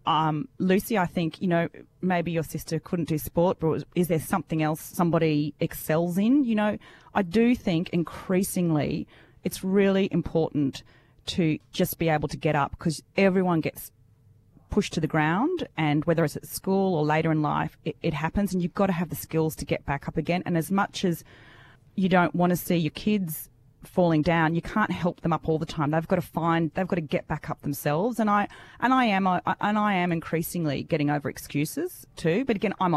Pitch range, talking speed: 155-195 Hz, 210 wpm